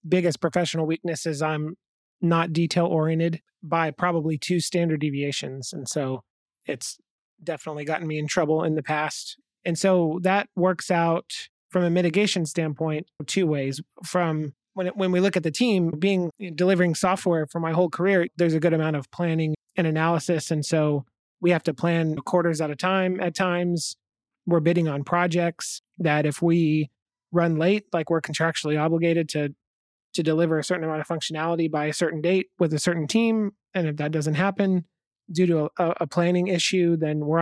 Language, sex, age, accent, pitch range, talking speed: English, male, 30-49, American, 155-180 Hz, 180 wpm